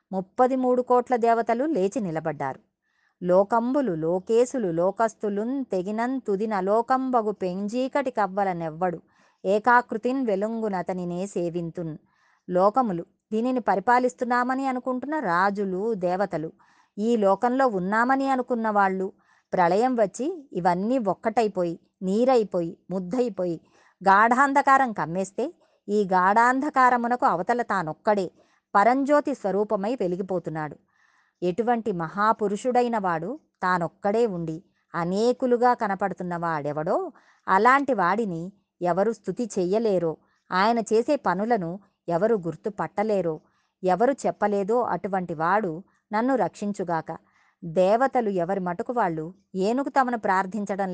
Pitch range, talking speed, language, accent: 185-245 Hz, 85 wpm, Telugu, native